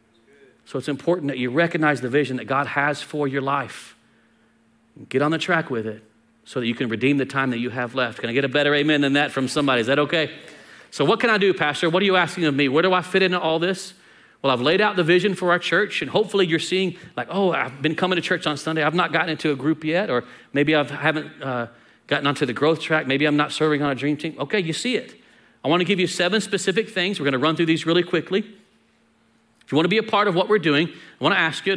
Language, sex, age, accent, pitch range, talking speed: English, male, 40-59, American, 145-190 Hz, 270 wpm